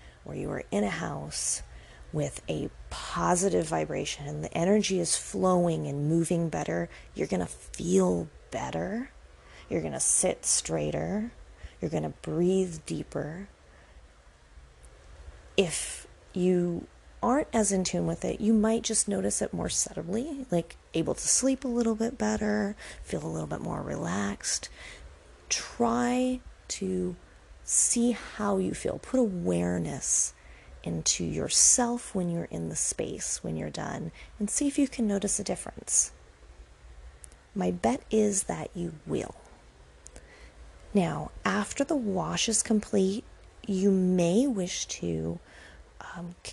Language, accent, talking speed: English, American, 135 wpm